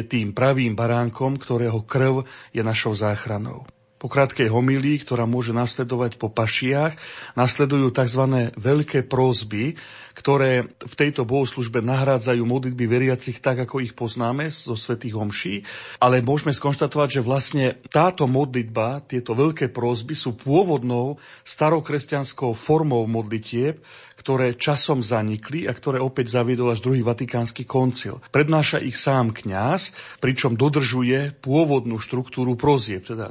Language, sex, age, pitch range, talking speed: Slovak, male, 40-59, 120-135 Hz, 125 wpm